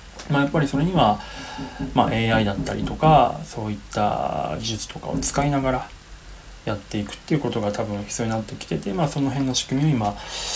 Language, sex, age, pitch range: Japanese, male, 20-39, 105-135 Hz